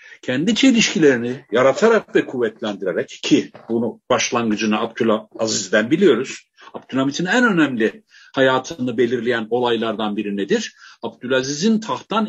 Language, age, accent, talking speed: Turkish, 60-79, native, 100 wpm